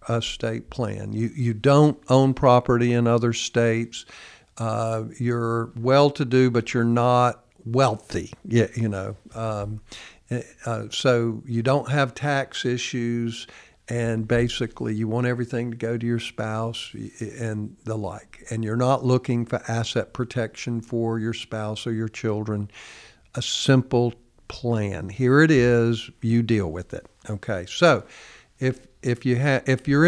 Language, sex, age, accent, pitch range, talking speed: English, male, 50-69, American, 110-125 Hz, 150 wpm